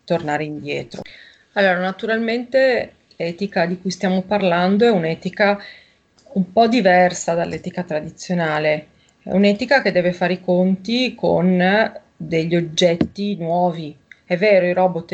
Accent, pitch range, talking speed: native, 165-195 Hz, 125 wpm